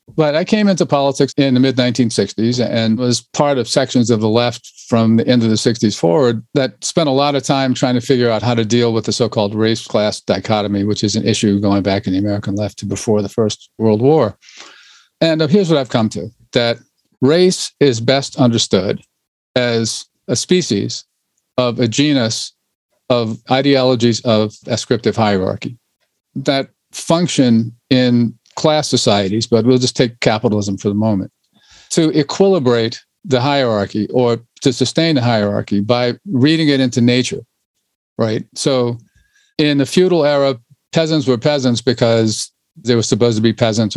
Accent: American